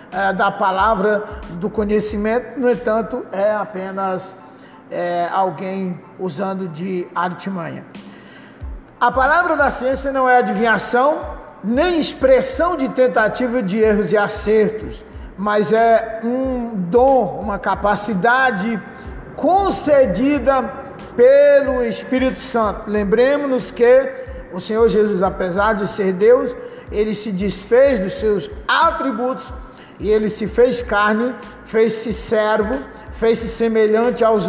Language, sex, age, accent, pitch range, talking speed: Portuguese, male, 50-69, Brazilian, 210-255 Hz, 110 wpm